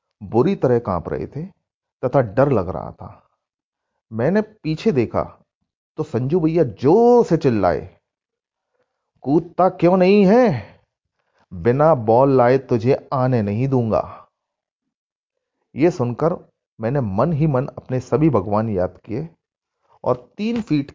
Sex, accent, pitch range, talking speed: male, native, 115-170 Hz, 125 wpm